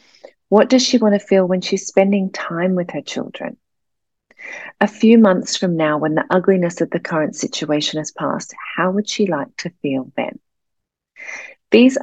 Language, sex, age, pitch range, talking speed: English, female, 40-59, 150-195 Hz, 175 wpm